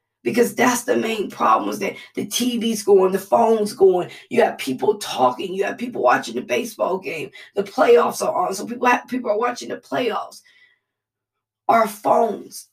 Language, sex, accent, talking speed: English, female, American, 180 wpm